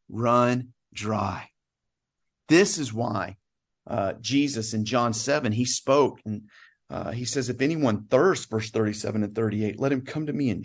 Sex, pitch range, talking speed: male, 110-150 Hz, 165 wpm